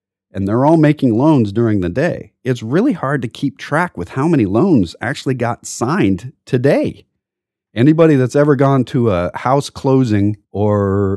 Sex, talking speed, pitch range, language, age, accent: male, 165 wpm, 95-135 Hz, English, 40-59, American